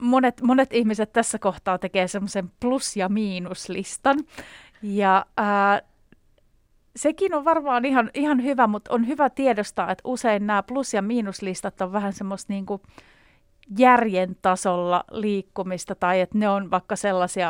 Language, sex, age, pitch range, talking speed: Finnish, female, 30-49, 185-225 Hz, 135 wpm